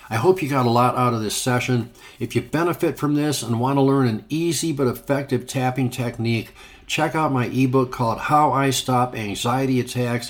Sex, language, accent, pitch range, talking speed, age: male, English, American, 115-140 Hz, 205 wpm, 60-79